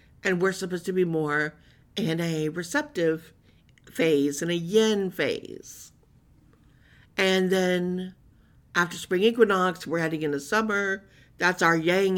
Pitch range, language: 160-190 Hz, English